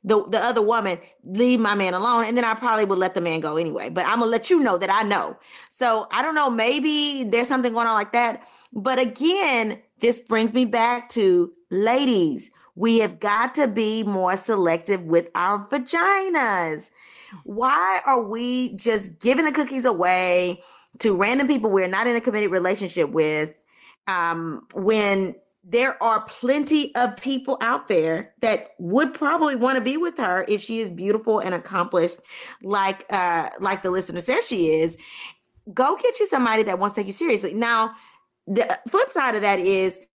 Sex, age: female, 30-49